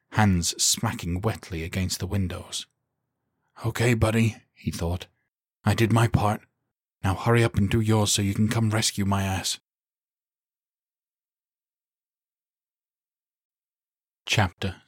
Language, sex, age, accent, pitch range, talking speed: English, male, 40-59, British, 90-115 Hz, 115 wpm